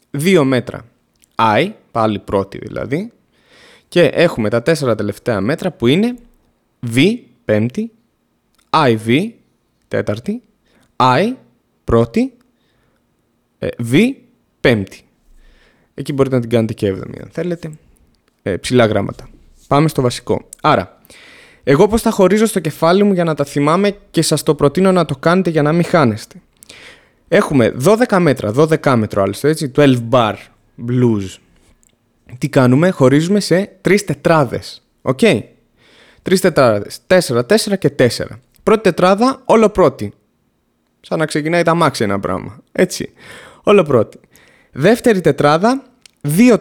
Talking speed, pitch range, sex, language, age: 125 wpm, 120-200 Hz, male, Greek, 20-39